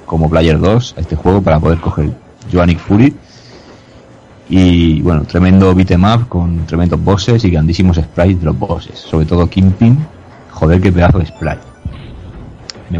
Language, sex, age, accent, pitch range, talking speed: Spanish, male, 30-49, Spanish, 80-95 Hz, 160 wpm